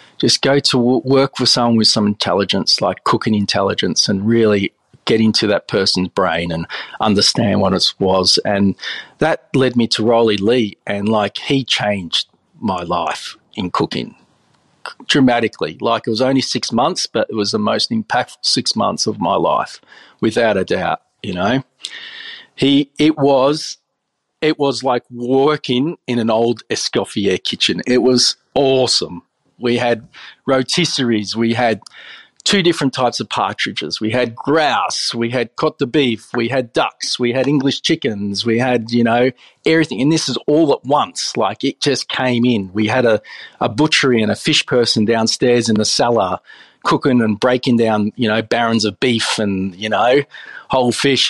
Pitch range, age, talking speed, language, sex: 110-135 Hz, 40-59, 170 wpm, English, male